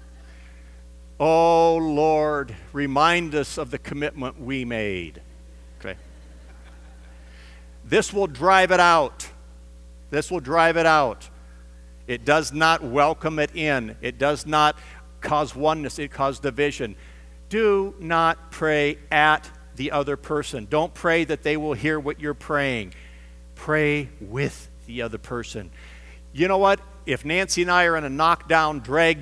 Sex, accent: male, American